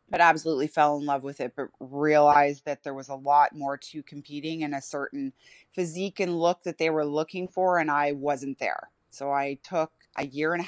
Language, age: English, 20-39